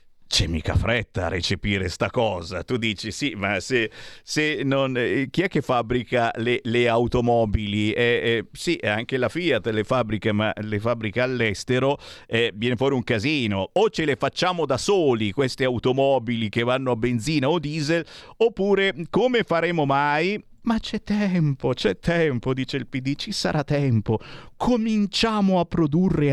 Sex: male